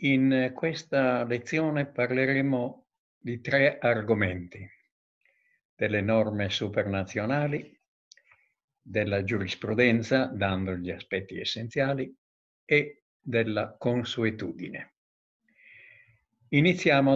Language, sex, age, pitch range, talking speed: Italian, male, 60-79, 110-140 Hz, 70 wpm